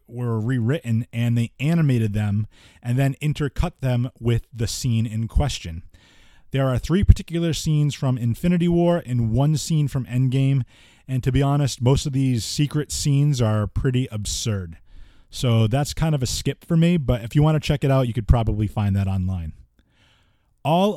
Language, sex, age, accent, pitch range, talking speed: English, male, 30-49, American, 115-145 Hz, 180 wpm